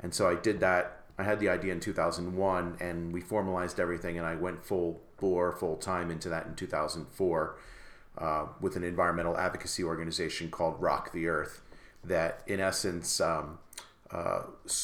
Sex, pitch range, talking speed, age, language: male, 80-95 Hz, 180 wpm, 40-59, English